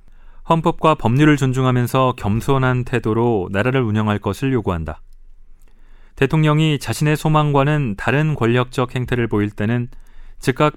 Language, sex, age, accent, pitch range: Korean, male, 40-59, native, 110-140 Hz